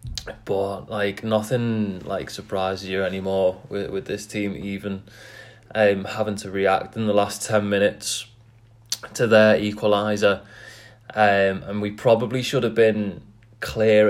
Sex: male